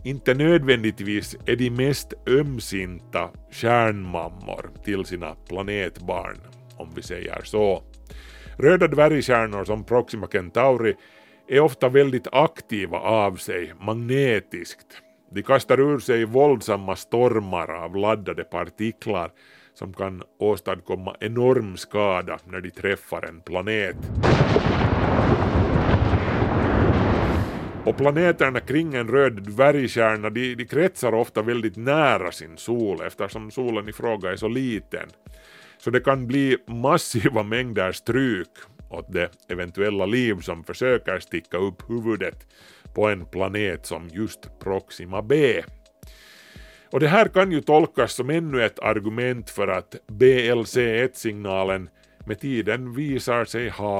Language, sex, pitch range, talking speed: Swedish, male, 95-125 Hz, 120 wpm